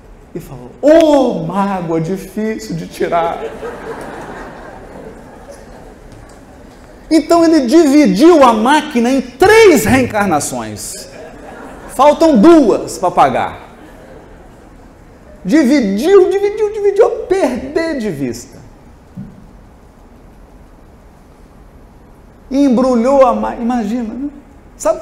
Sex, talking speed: male, 75 wpm